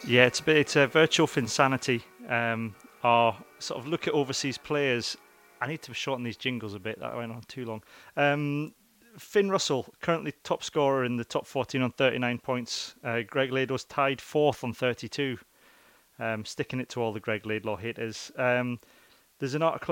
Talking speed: 185 wpm